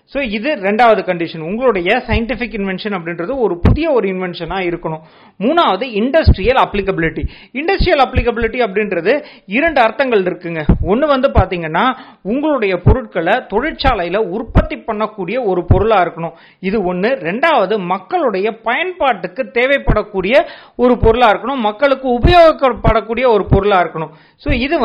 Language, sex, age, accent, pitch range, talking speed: Tamil, male, 30-49, native, 190-265 Hz, 30 wpm